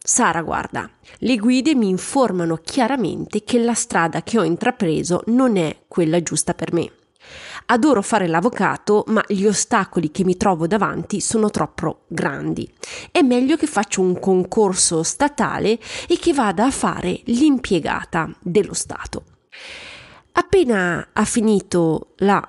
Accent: native